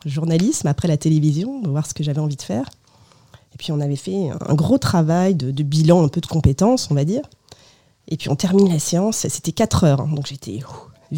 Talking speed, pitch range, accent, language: 230 wpm, 145-190 Hz, French, French